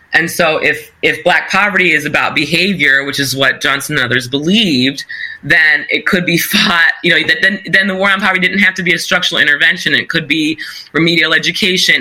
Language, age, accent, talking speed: English, 20-39, American, 210 wpm